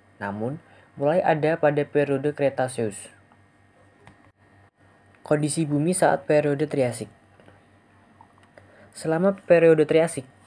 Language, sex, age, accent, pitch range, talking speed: Indonesian, female, 20-39, native, 115-155 Hz, 80 wpm